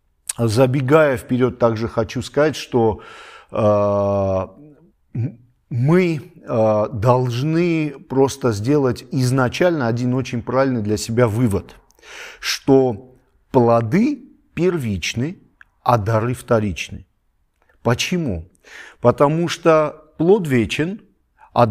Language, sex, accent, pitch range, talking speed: Russian, male, native, 110-145 Hz, 85 wpm